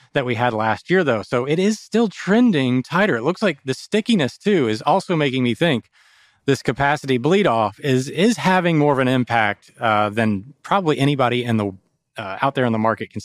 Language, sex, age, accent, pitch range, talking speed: English, male, 30-49, American, 115-145 Hz, 215 wpm